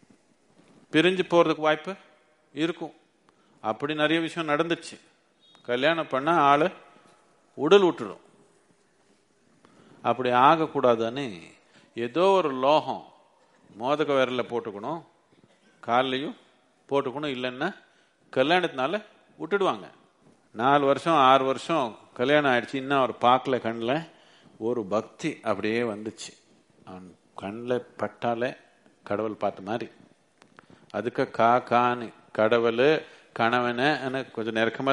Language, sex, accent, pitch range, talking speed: Tamil, male, native, 115-150 Hz, 90 wpm